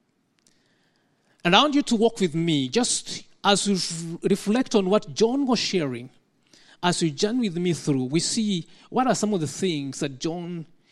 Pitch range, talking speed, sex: 155-230 Hz, 180 wpm, male